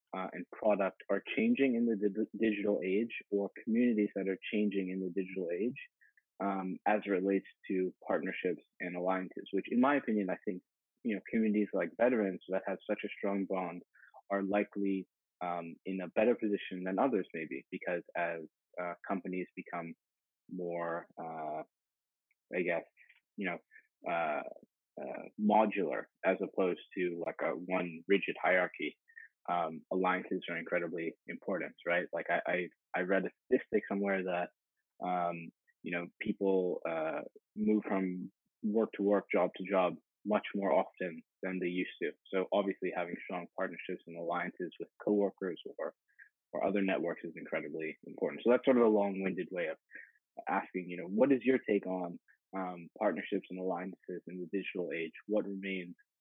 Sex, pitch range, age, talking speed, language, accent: male, 90-105 Hz, 20-39, 160 wpm, English, American